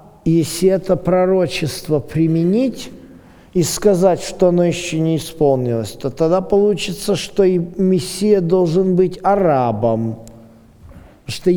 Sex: male